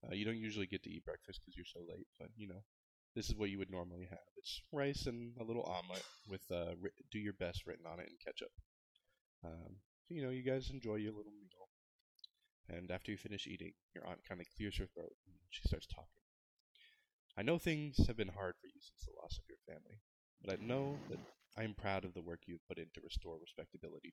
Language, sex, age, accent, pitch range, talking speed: English, male, 20-39, American, 90-110 Hz, 230 wpm